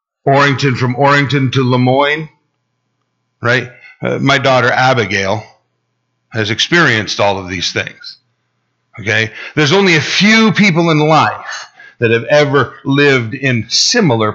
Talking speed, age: 125 wpm, 40-59